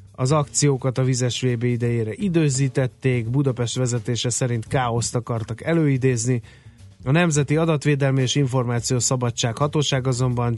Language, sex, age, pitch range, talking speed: Hungarian, male, 30-49, 120-145 Hz, 120 wpm